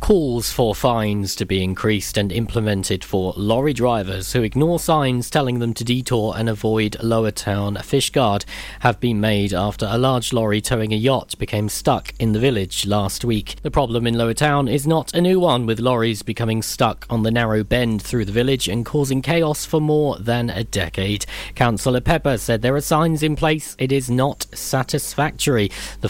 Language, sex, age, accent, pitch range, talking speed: English, male, 40-59, British, 105-125 Hz, 190 wpm